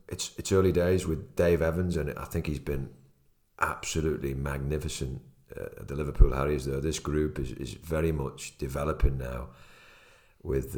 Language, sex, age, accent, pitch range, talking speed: English, male, 40-59, British, 70-90 Hz, 160 wpm